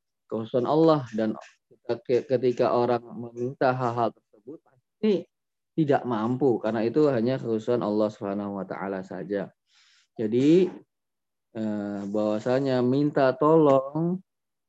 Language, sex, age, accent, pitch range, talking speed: Indonesian, male, 20-39, native, 110-145 Hz, 90 wpm